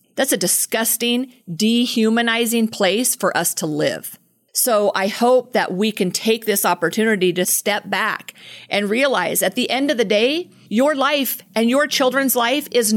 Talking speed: 165 wpm